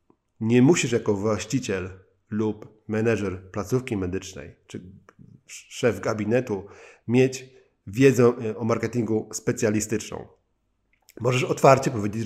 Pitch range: 100-125 Hz